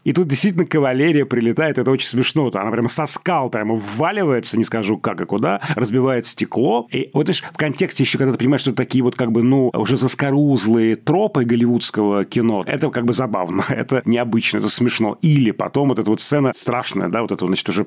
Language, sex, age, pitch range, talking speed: Russian, male, 30-49, 105-135 Hz, 210 wpm